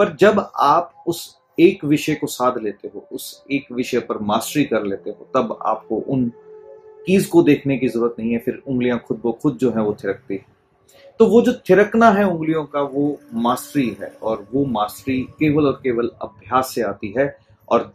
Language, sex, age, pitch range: Hindi, male, 30-49, 115-165 Hz